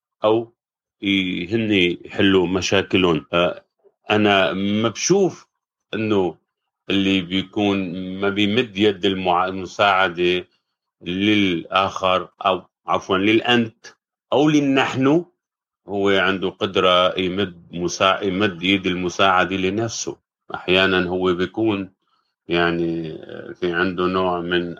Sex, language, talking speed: male, Arabic, 85 wpm